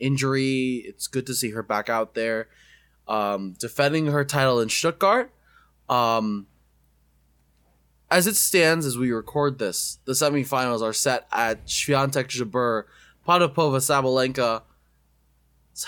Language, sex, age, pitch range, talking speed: English, male, 20-39, 105-150 Hz, 115 wpm